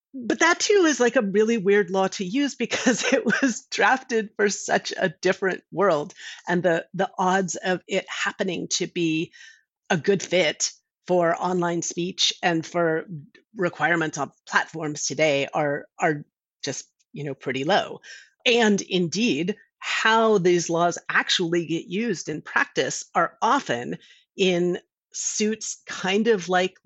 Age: 40-59